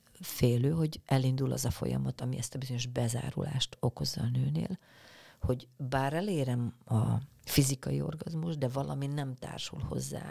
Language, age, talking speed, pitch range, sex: Hungarian, 40-59, 145 wpm, 125-150 Hz, female